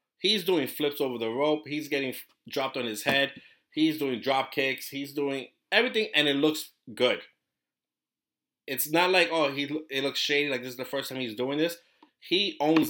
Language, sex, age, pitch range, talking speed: English, male, 30-49, 115-140 Hz, 195 wpm